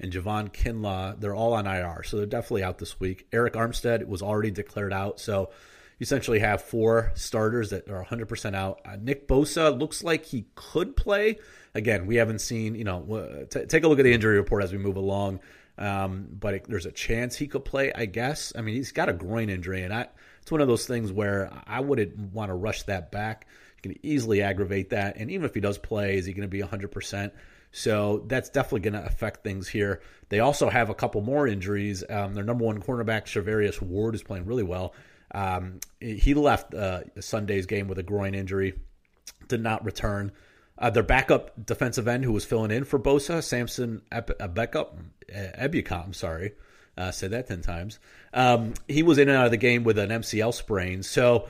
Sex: male